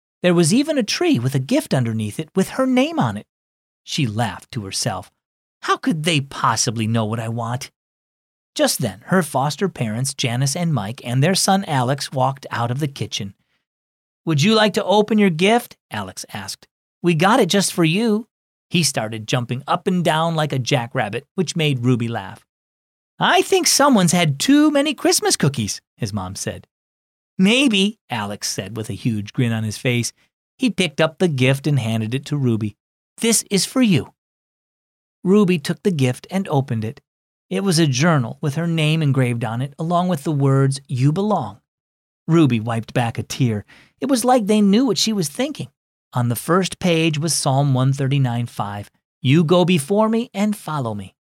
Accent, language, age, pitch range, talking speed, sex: American, English, 40-59, 120-195 Hz, 185 wpm, male